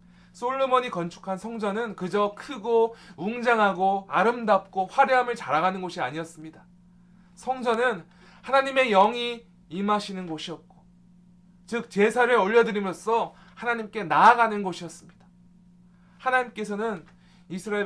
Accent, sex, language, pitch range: native, male, Korean, 175-205 Hz